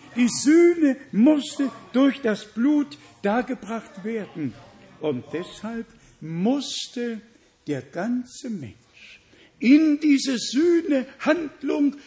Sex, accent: male, German